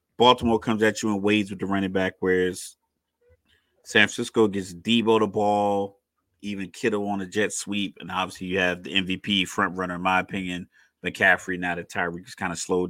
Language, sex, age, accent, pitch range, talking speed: English, male, 30-49, American, 95-110 Hz, 195 wpm